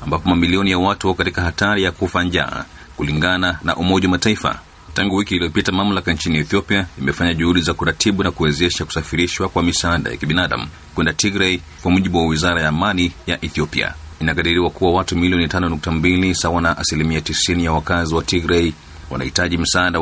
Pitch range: 80-95 Hz